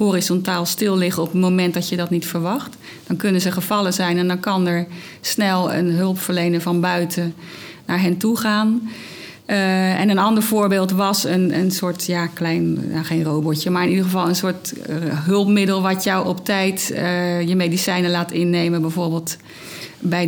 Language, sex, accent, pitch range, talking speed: Dutch, female, Dutch, 175-200 Hz, 185 wpm